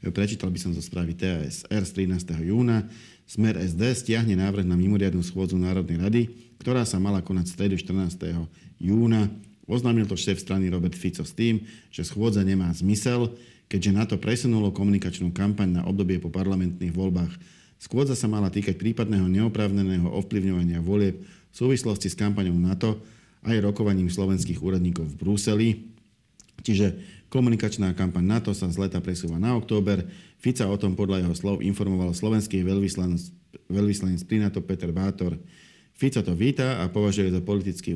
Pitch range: 90-105 Hz